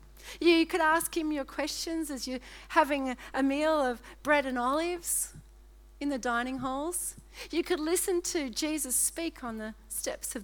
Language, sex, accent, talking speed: English, female, Australian, 165 wpm